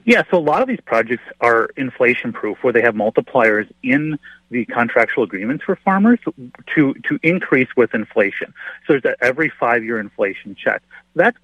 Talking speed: 165 wpm